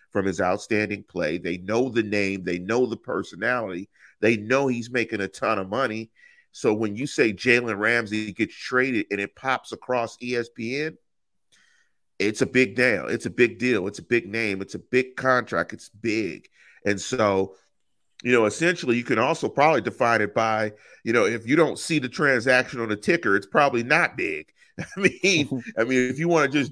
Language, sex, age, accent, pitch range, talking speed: English, male, 40-59, American, 105-150 Hz, 195 wpm